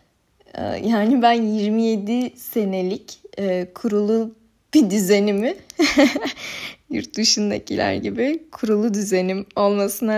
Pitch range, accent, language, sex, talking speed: 205-245 Hz, native, Turkish, female, 75 wpm